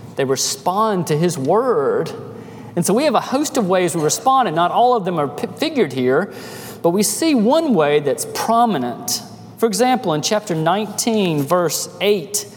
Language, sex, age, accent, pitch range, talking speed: English, male, 40-59, American, 155-230 Hz, 175 wpm